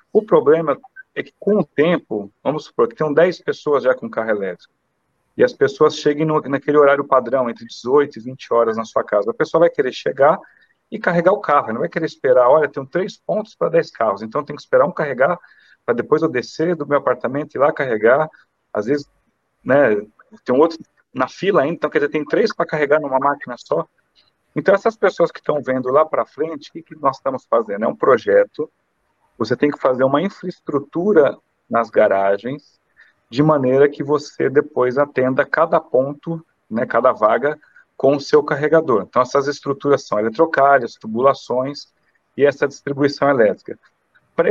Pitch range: 135-195 Hz